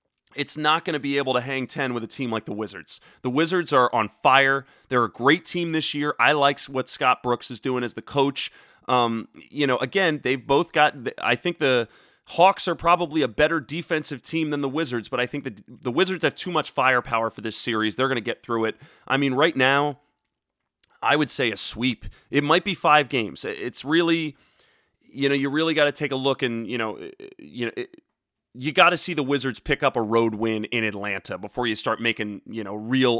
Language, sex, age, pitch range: English, male, 30-49, 115-150 Hz